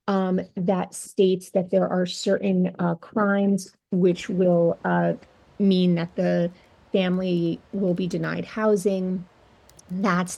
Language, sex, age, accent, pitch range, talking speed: English, female, 30-49, American, 175-195 Hz, 120 wpm